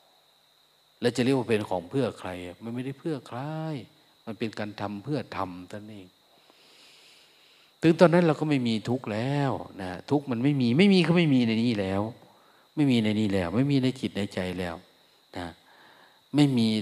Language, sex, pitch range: Thai, male, 95-130 Hz